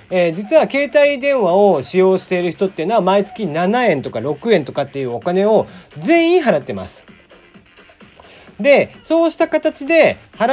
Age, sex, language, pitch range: 40-59, male, Japanese, 155-250 Hz